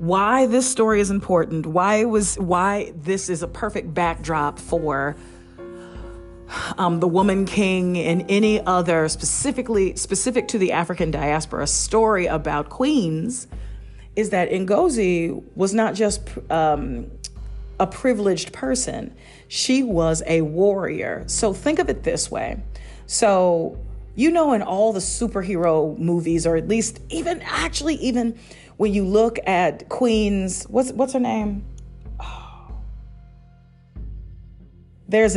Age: 40-59